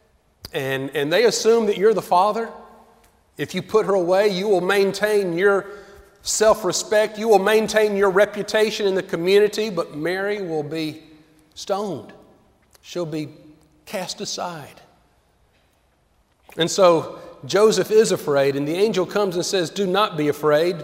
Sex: male